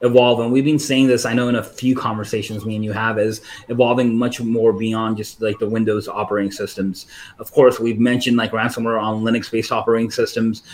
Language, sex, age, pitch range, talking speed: English, male, 30-49, 110-130 Hz, 210 wpm